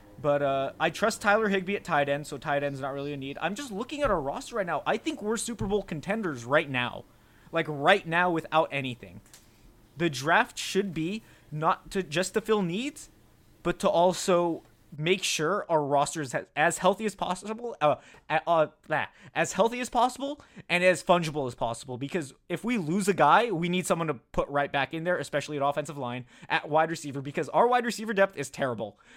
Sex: male